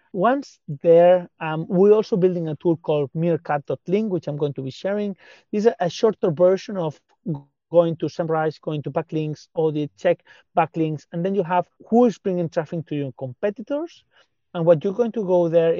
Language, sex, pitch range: English, male, 160-200 Hz